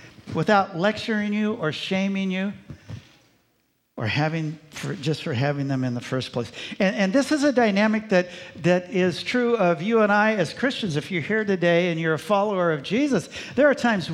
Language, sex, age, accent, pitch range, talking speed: English, male, 60-79, American, 130-180 Hz, 195 wpm